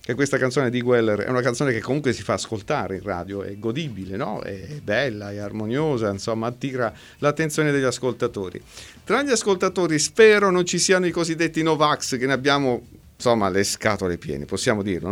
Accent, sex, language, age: native, male, Italian, 50-69